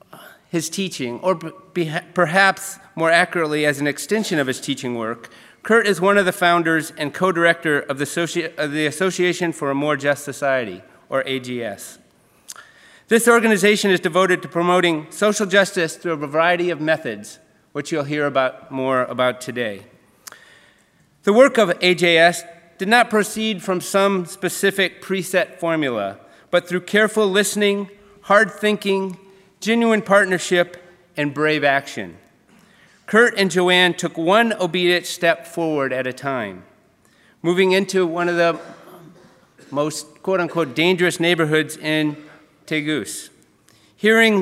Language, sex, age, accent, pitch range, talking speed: English, male, 40-59, American, 150-195 Hz, 135 wpm